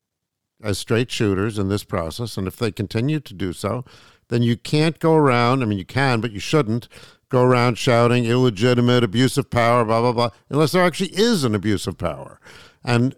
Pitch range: 100-125 Hz